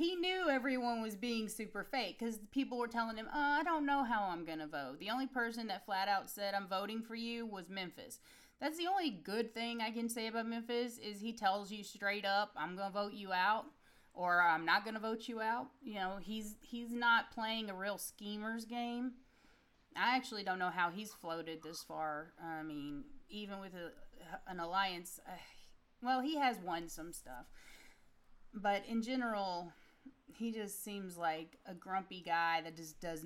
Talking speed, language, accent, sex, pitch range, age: 200 wpm, English, American, female, 175-240 Hz, 30-49